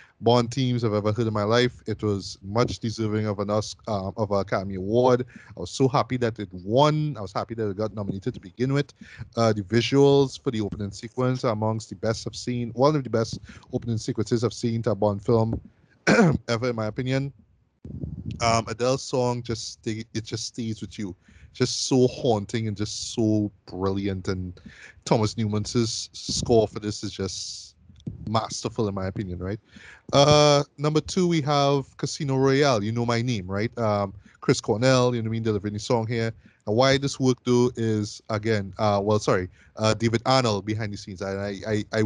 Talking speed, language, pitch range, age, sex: 200 wpm, English, 105-125 Hz, 20-39, male